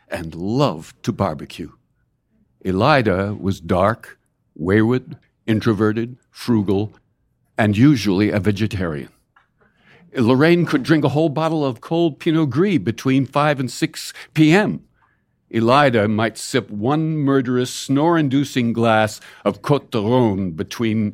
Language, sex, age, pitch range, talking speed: English, male, 60-79, 105-150 Hz, 115 wpm